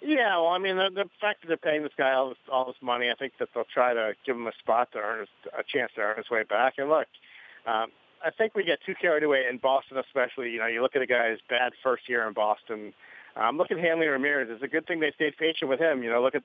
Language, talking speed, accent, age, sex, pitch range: English, 280 wpm, American, 40-59, male, 120-145 Hz